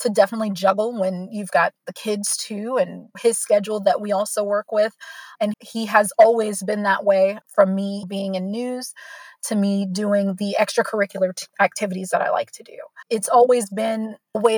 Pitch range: 200-230 Hz